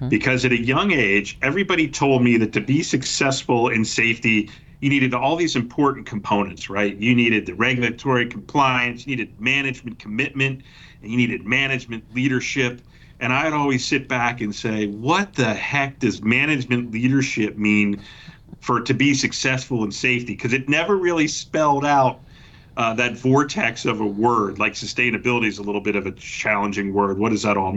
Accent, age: American, 40-59